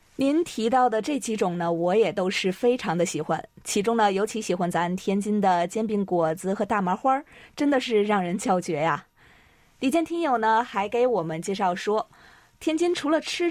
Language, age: Chinese, 20-39